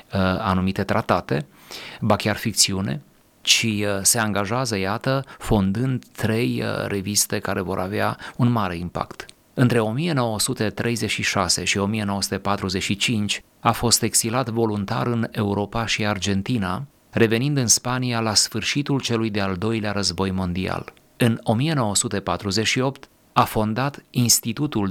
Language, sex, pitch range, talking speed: Romanian, male, 100-120 Hz, 110 wpm